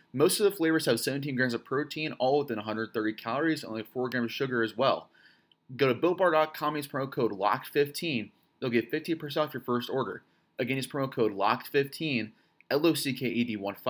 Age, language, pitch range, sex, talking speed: 30-49, English, 115-145 Hz, male, 180 wpm